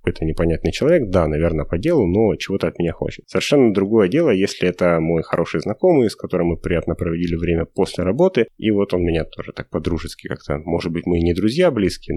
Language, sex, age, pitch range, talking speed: Russian, male, 30-49, 85-100 Hz, 210 wpm